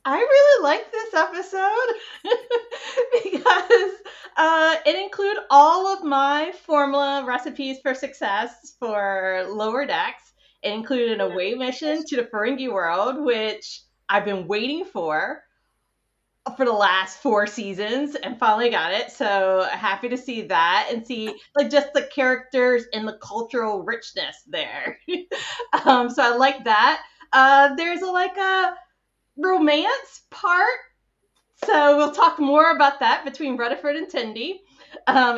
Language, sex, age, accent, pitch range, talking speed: English, female, 30-49, American, 220-305 Hz, 135 wpm